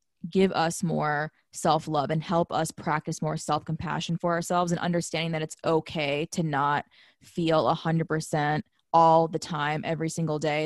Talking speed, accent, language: 165 wpm, American, English